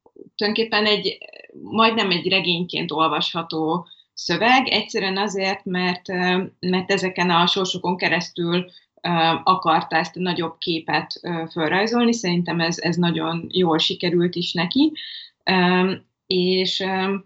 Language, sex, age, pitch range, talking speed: Hungarian, female, 20-39, 170-200 Hz, 100 wpm